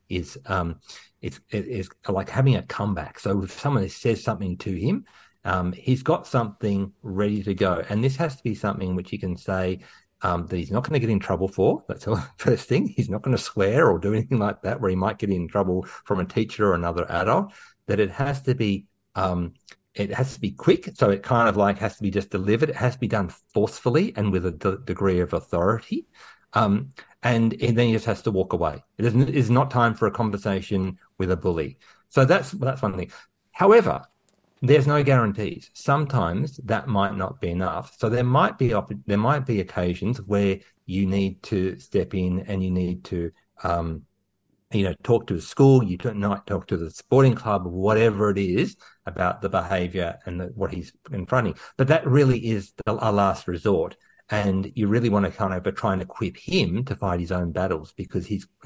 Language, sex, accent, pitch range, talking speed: English, male, Australian, 95-115 Hz, 210 wpm